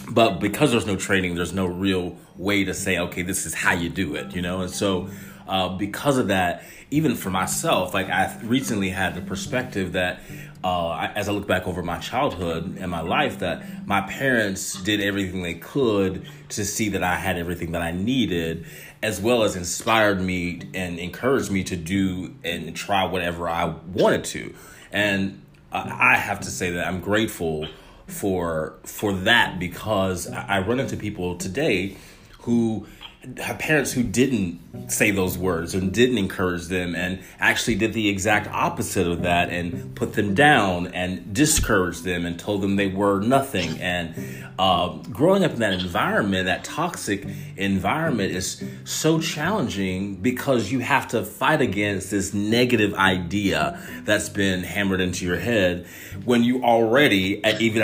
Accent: American